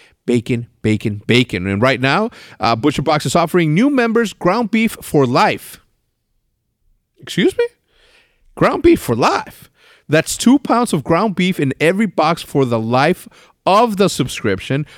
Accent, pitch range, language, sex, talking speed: American, 115-185 Hz, English, male, 150 wpm